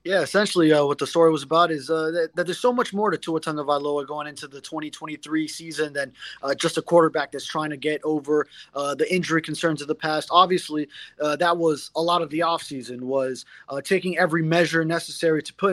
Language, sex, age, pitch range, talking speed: English, male, 20-39, 150-175 Hz, 220 wpm